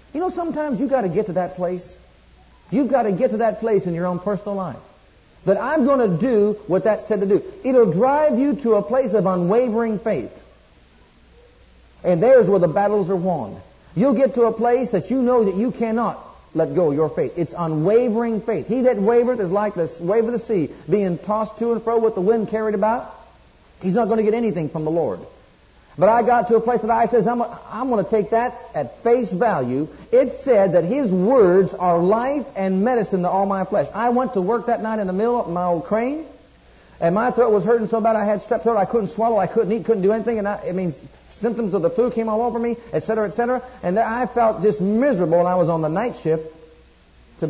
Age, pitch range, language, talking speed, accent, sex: 50-69, 180-235 Hz, English, 235 wpm, American, male